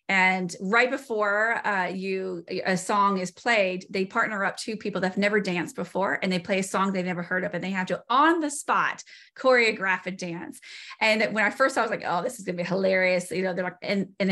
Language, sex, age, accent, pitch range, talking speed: English, female, 30-49, American, 185-240 Hz, 245 wpm